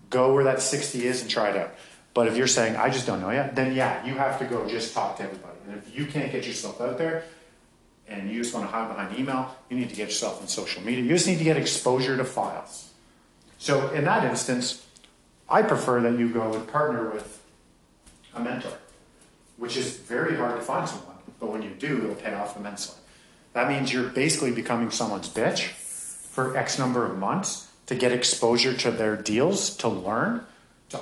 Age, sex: 40-59, male